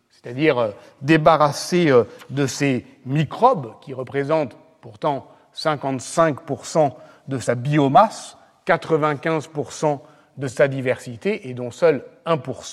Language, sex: French, male